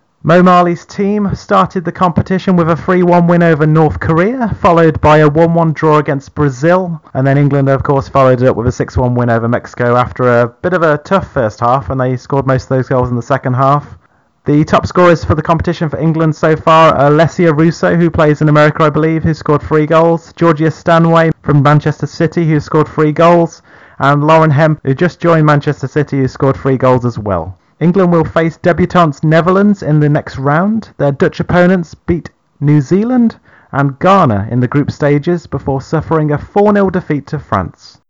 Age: 30-49